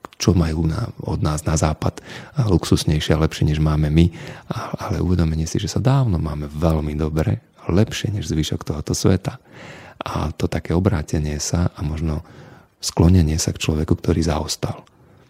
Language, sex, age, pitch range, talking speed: Slovak, male, 40-59, 75-95 Hz, 165 wpm